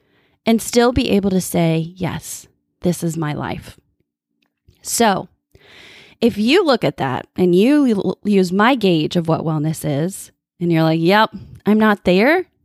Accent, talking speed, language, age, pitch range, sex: American, 155 wpm, English, 20-39, 175-245 Hz, female